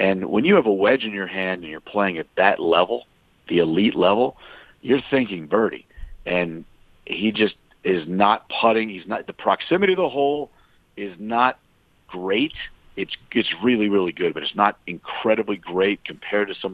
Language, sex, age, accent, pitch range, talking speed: English, male, 50-69, American, 95-110 Hz, 180 wpm